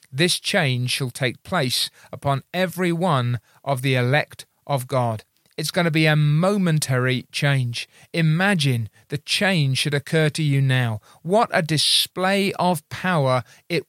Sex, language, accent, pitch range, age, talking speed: male, English, British, 150-205 Hz, 40-59, 145 wpm